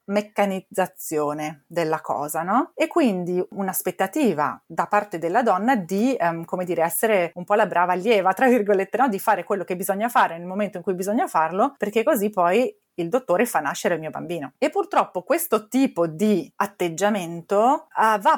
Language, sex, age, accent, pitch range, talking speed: Italian, female, 30-49, native, 175-230 Hz, 170 wpm